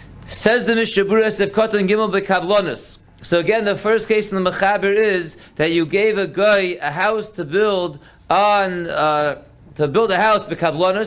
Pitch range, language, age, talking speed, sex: 180-215 Hz, English, 30-49, 150 wpm, male